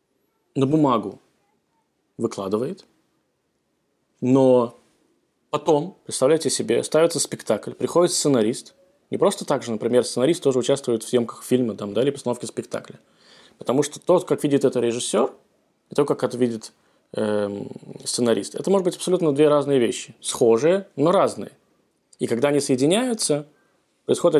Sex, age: male, 20-39